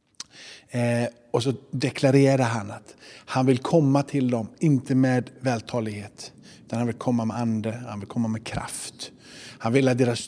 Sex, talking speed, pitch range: male, 165 wpm, 120-135 Hz